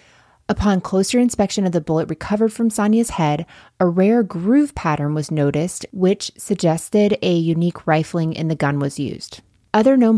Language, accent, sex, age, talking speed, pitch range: English, American, female, 30-49, 165 wpm, 160-205 Hz